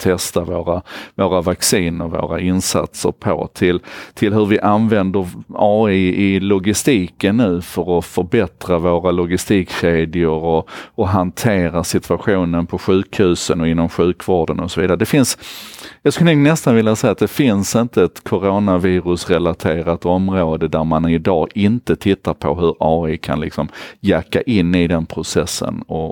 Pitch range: 85-100 Hz